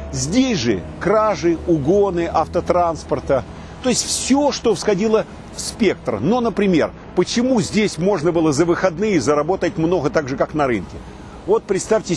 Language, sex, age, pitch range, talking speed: Russian, male, 50-69, 135-205 Hz, 145 wpm